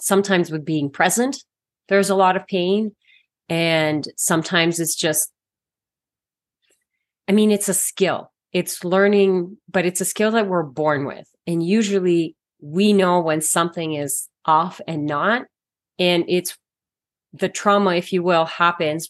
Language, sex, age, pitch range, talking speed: English, female, 30-49, 160-195 Hz, 145 wpm